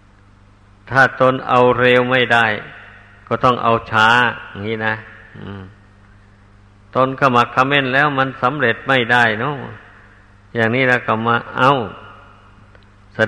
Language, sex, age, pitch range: Thai, male, 60-79, 100-125 Hz